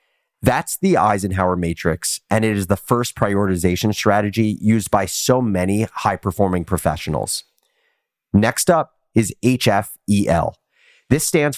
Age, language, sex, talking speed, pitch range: 30-49, English, male, 120 wpm, 95-125 Hz